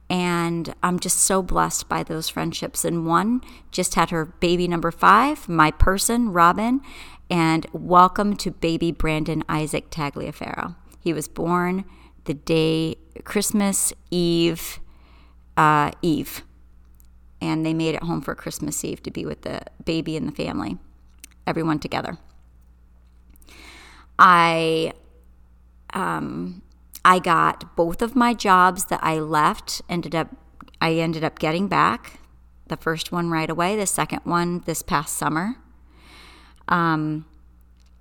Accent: American